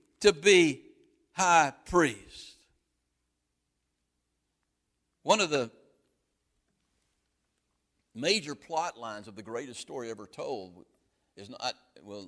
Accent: American